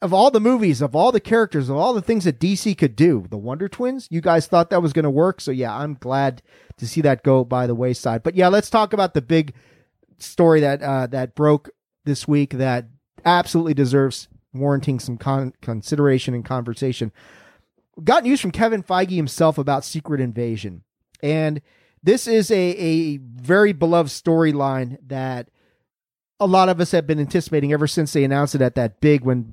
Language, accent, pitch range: English, American, 130-170 Hz